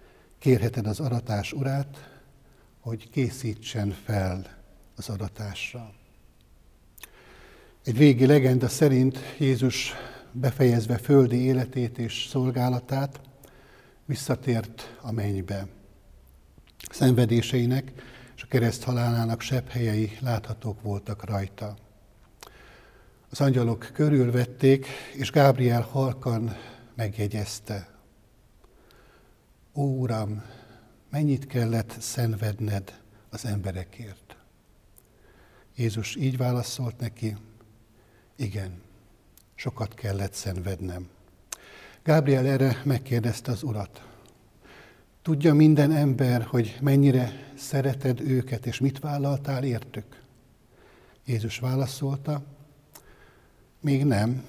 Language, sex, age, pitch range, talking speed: Hungarian, male, 60-79, 105-130 Hz, 80 wpm